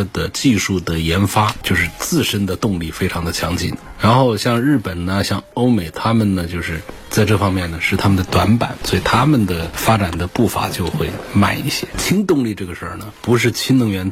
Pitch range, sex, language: 90-120 Hz, male, Chinese